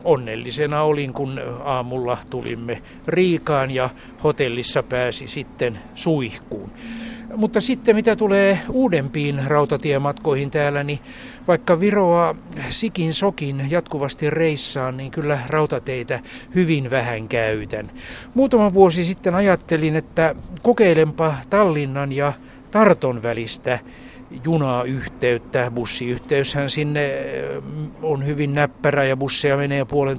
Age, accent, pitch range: 60-79, native, 130-160 Hz